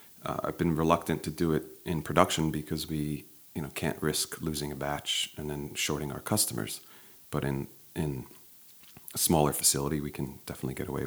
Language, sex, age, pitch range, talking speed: English, male, 40-59, 75-85 Hz, 185 wpm